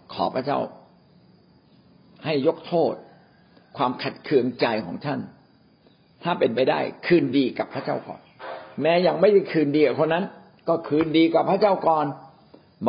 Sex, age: male, 60-79